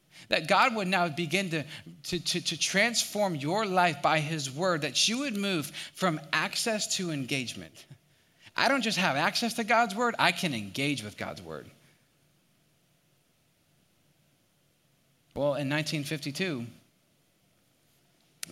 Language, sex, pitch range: English, male, 140-170 Hz